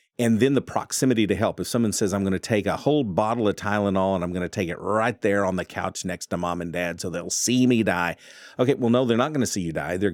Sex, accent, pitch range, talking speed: male, American, 90-110 Hz, 295 wpm